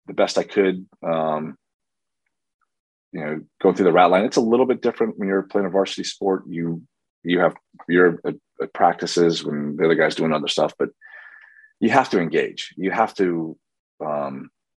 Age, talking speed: 30-49, 180 wpm